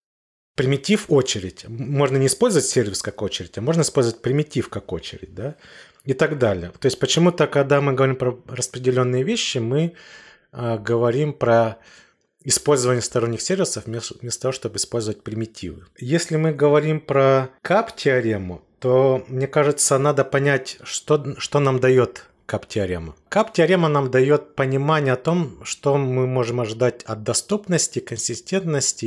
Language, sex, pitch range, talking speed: Russian, male, 115-145 Hz, 140 wpm